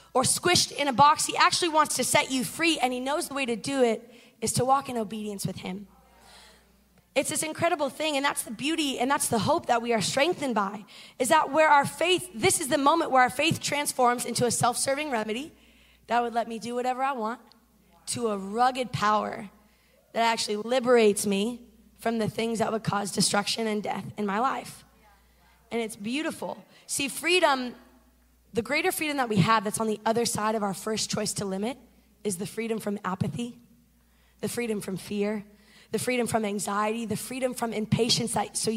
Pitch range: 215-255 Hz